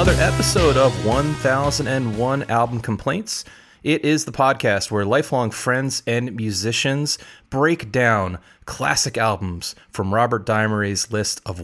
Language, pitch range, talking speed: English, 105-130 Hz, 125 wpm